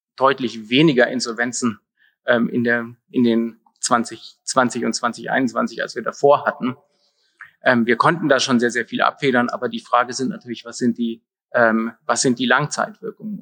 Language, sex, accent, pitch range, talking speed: German, male, German, 120-155 Hz, 165 wpm